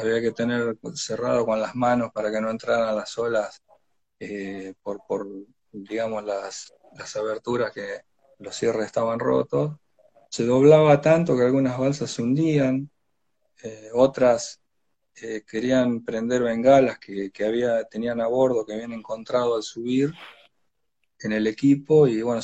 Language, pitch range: Spanish, 115-145 Hz